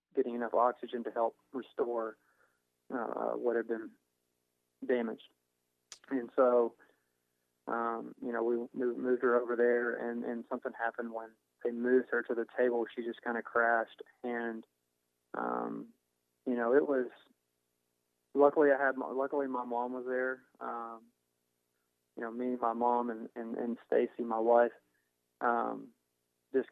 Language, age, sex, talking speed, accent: English, 20-39, male, 150 wpm, American